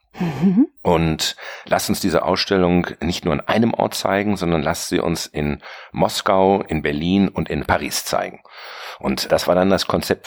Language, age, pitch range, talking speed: German, 50-69, 80-100 Hz, 170 wpm